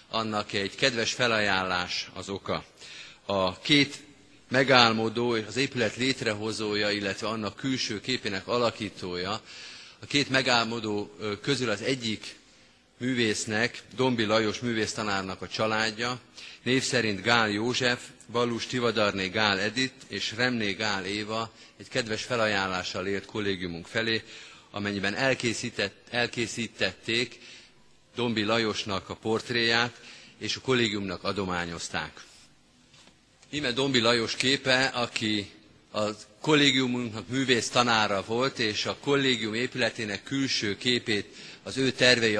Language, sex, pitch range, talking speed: Hungarian, male, 105-125 Hz, 110 wpm